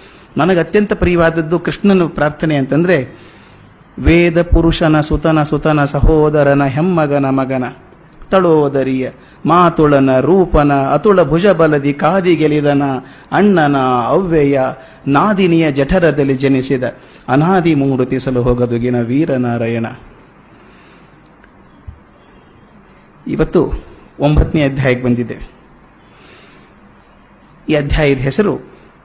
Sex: male